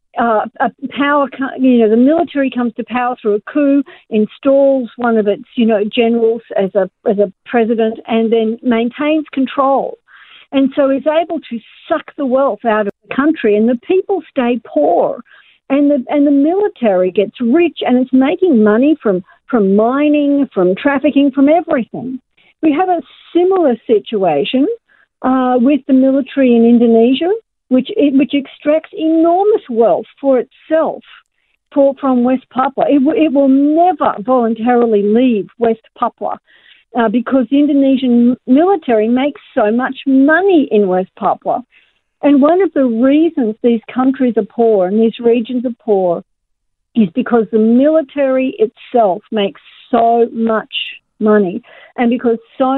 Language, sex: English, female